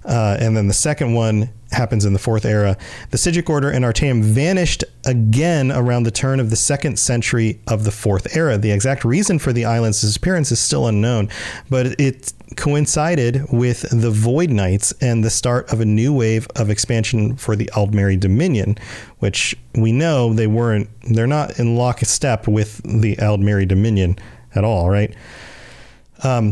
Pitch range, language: 110-135 Hz, English